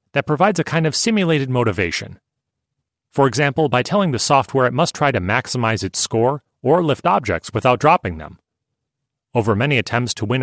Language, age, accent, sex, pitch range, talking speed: English, 40-59, American, male, 110-150 Hz, 180 wpm